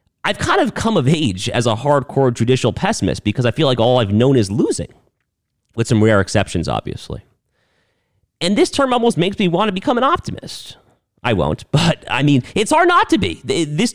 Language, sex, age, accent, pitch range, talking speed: English, male, 30-49, American, 100-130 Hz, 200 wpm